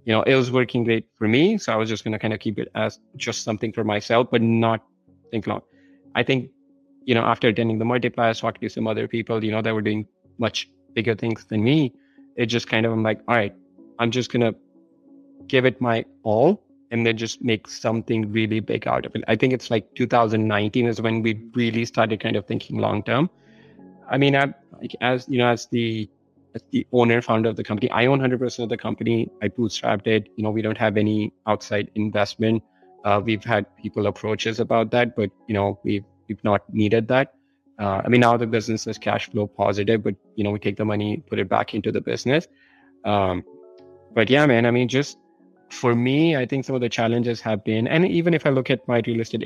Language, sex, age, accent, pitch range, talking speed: English, male, 30-49, Indian, 105-125 Hz, 225 wpm